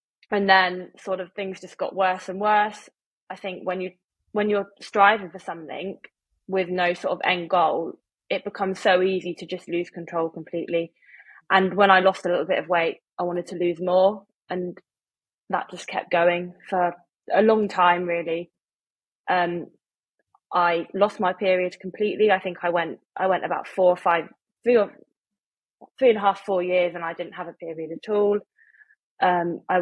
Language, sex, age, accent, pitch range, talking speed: English, female, 20-39, British, 175-195 Hz, 185 wpm